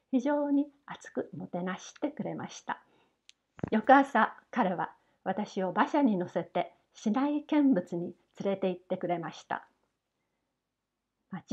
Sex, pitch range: female, 185-255 Hz